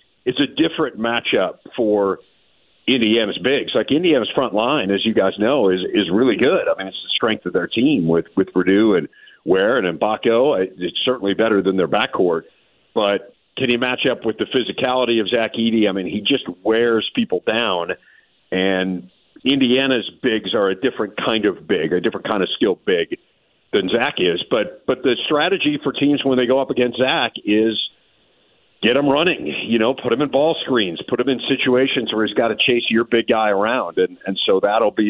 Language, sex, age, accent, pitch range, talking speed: English, male, 50-69, American, 105-135 Hz, 200 wpm